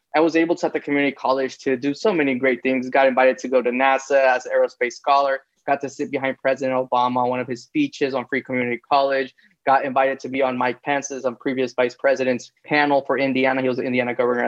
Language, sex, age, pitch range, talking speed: English, male, 20-39, 130-145 Hz, 240 wpm